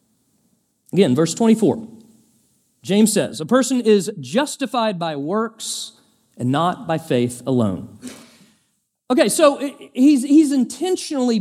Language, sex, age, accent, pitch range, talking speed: English, male, 40-59, American, 175-240 Hz, 110 wpm